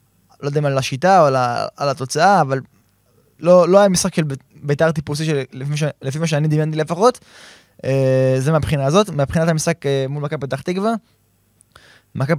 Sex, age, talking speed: male, 20-39, 155 wpm